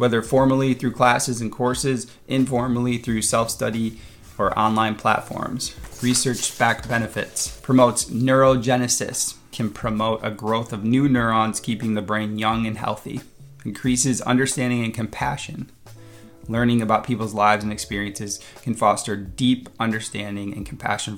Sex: male